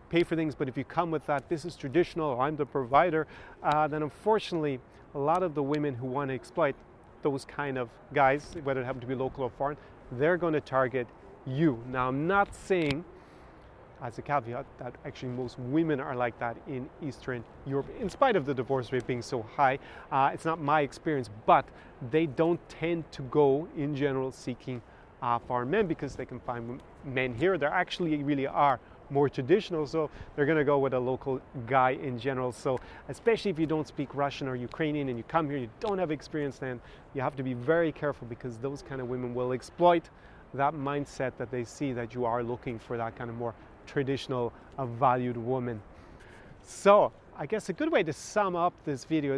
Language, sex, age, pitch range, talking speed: English, male, 30-49, 125-155 Hz, 205 wpm